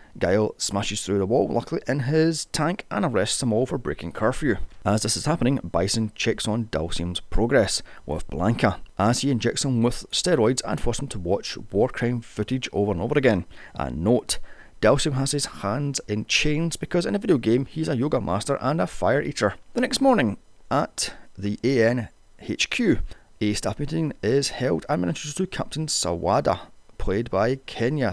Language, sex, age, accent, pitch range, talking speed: English, male, 30-49, British, 100-140 Hz, 180 wpm